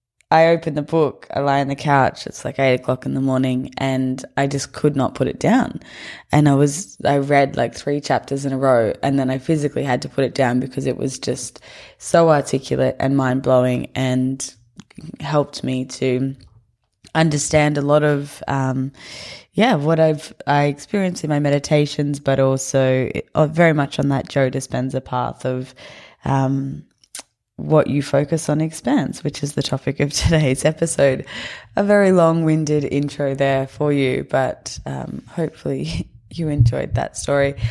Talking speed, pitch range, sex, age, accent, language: 165 wpm, 130-150 Hz, female, 10-29, Australian, English